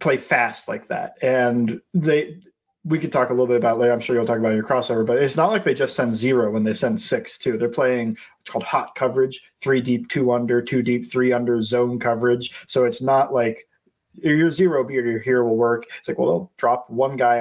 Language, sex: English, male